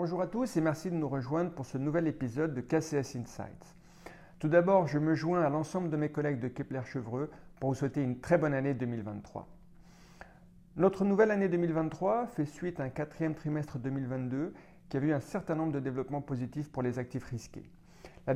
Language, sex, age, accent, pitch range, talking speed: French, male, 50-69, French, 135-170 Hz, 195 wpm